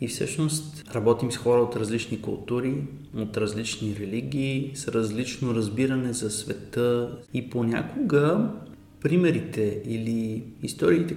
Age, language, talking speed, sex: 20-39, Bulgarian, 115 wpm, male